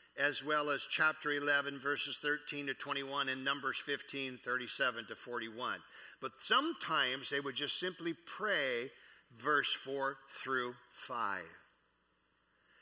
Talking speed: 120 wpm